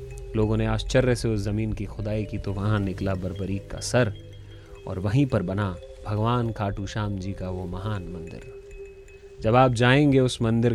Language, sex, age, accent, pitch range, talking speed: Hindi, male, 30-49, native, 90-115 Hz, 180 wpm